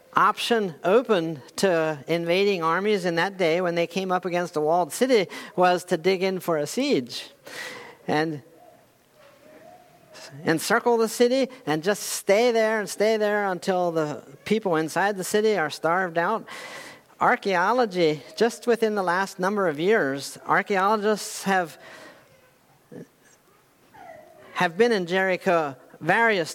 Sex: male